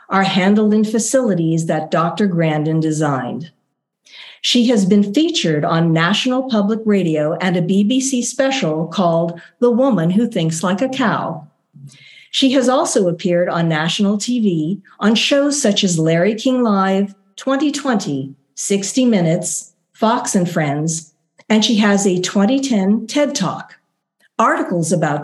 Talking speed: 135 wpm